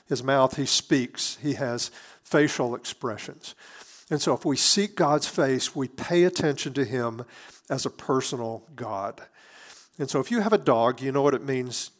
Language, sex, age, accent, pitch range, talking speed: English, male, 50-69, American, 120-160 Hz, 180 wpm